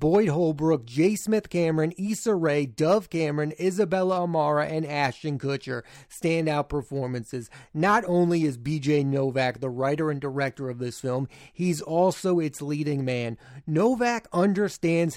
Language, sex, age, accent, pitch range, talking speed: English, male, 30-49, American, 140-175 Hz, 140 wpm